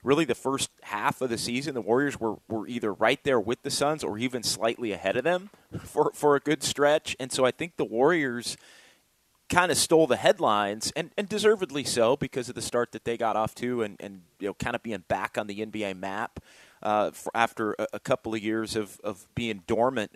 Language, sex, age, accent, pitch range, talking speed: English, male, 30-49, American, 110-140 Hz, 220 wpm